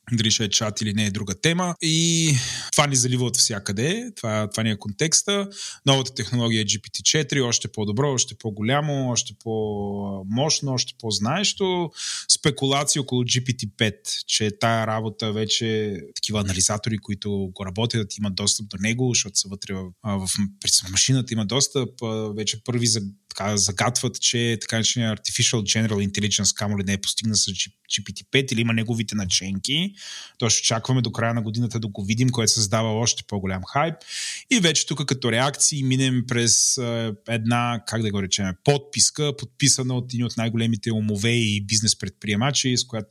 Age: 20-39